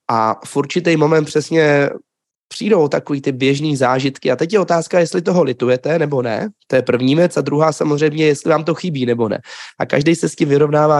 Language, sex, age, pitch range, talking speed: Czech, male, 20-39, 125-150 Hz, 205 wpm